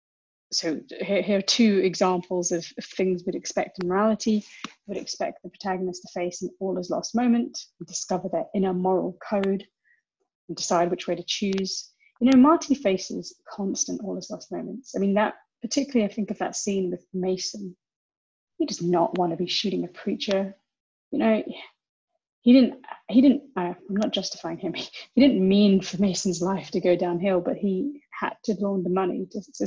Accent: British